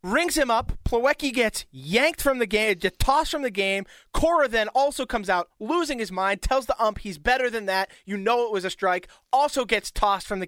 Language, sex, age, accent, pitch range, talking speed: English, male, 30-49, American, 190-250 Hz, 225 wpm